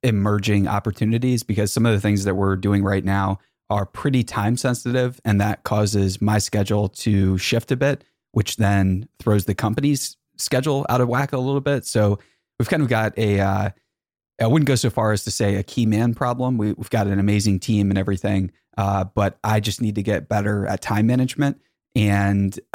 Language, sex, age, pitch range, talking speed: English, male, 20-39, 100-115 Hz, 200 wpm